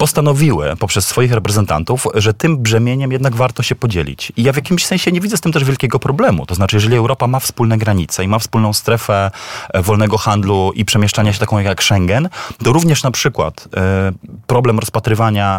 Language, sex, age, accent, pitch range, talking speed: Polish, male, 30-49, native, 100-130 Hz, 185 wpm